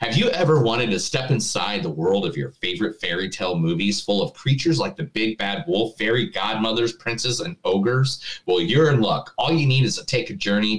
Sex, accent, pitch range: male, American, 110-150 Hz